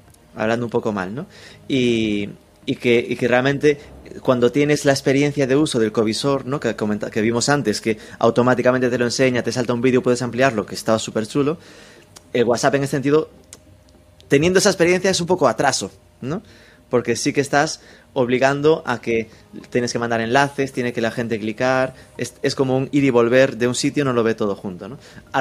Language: Spanish